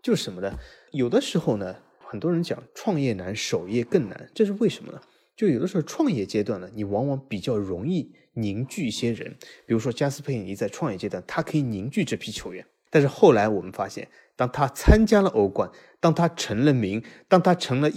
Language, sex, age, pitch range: Chinese, male, 20-39, 110-155 Hz